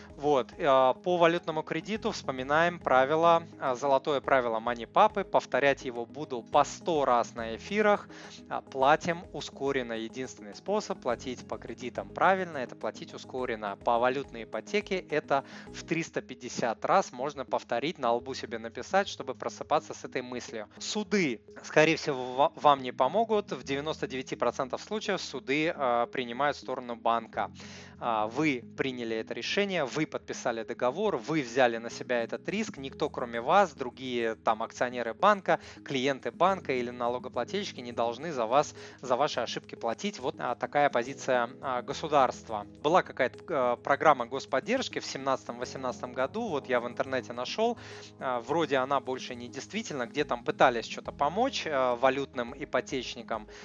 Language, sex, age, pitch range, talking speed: Russian, male, 20-39, 120-160 Hz, 135 wpm